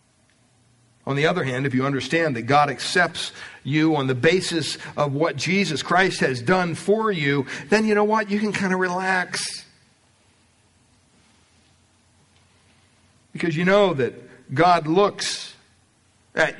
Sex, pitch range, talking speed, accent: male, 110-170 Hz, 135 wpm, American